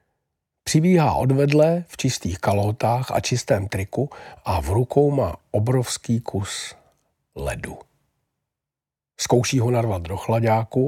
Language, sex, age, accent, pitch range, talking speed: Czech, male, 50-69, native, 100-130 Hz, 115 wpm